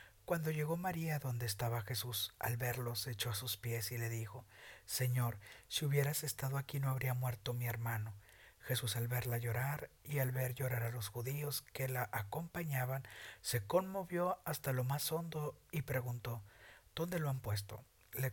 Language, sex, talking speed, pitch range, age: Spanish, male, 175 wpm, 120-145 Hz, 50-69